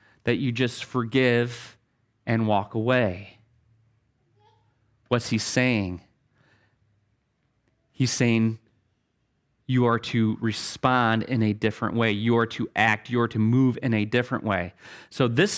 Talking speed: 130 wpm